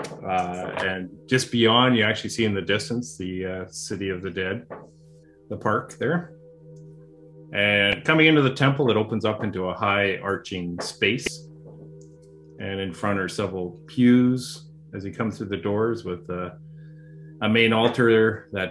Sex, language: male, English